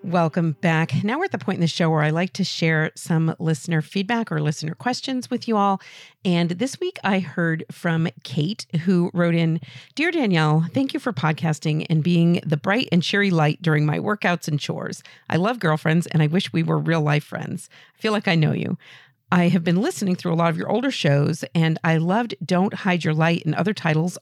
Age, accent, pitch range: 50-69, American, 155-195 Hz